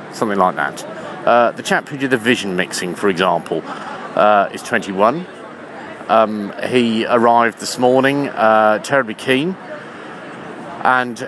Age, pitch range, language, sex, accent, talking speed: 40-59, 100-125 Hz, English, male, British, 135 wpm